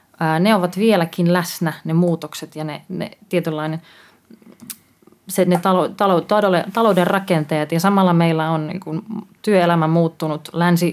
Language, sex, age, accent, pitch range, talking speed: Finnish, female, 30-49, native, 160-195 Hz, 130 wpm